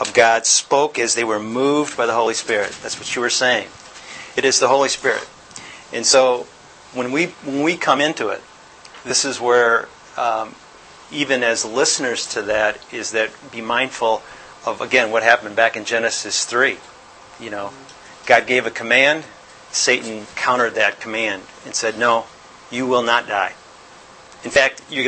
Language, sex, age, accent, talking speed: English, male, 40-59, American, 170 wpm